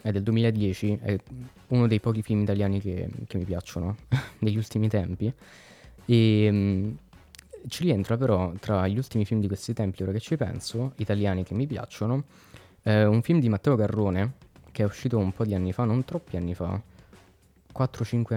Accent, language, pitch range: native, Italian, 95-115 Hz